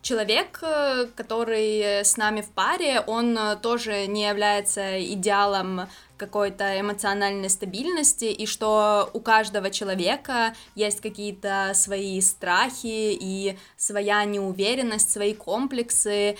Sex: female